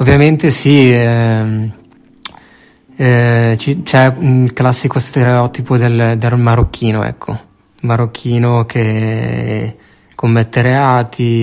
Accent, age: native, 20-39